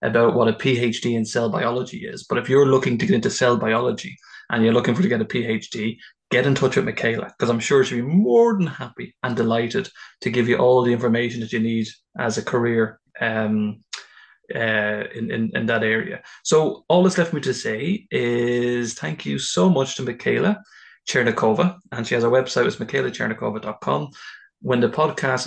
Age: 20-39